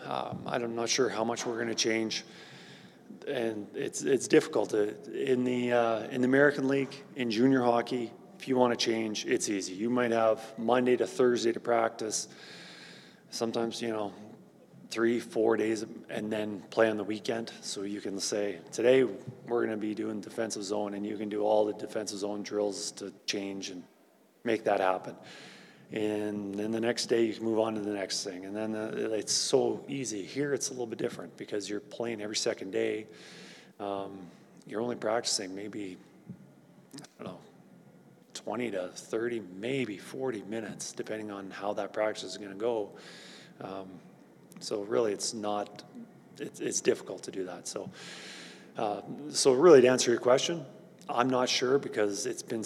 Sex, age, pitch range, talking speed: male, 30-49, 105-120 Hz, 180 wpm